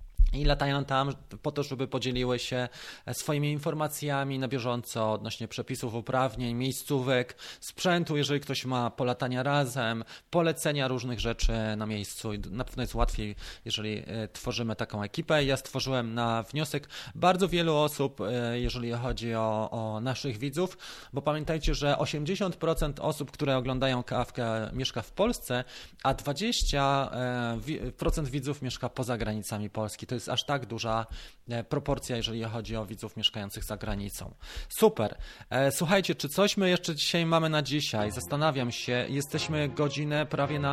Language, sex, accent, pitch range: Polish, male, native, 120-145 Hz